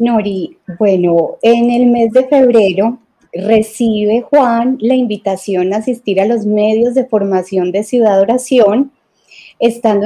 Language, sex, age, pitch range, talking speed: Spanish, female, 30-49, 200-250 Hz, 130 wpm